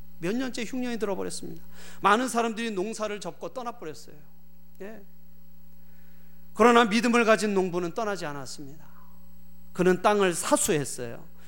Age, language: 40-59, Korean